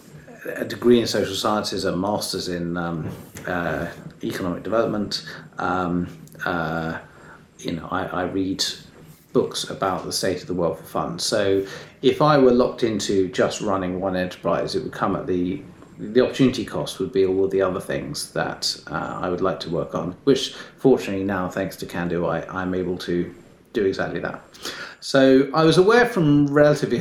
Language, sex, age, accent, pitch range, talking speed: English, male, 40-59, British, 90-105 Hz, 175 wpm